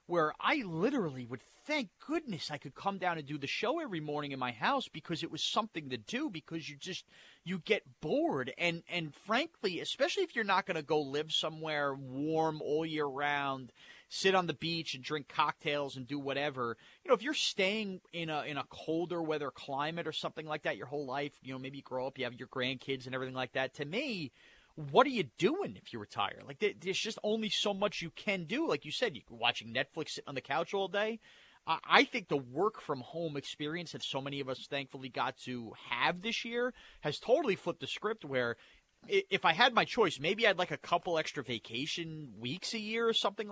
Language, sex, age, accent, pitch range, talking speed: English, male, 30-49, American, 140-190 Hz, 220 wpm